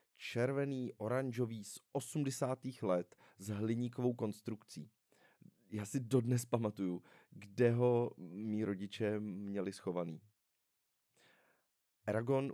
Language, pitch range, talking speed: Czech, 100-120 Hz, 85 wpm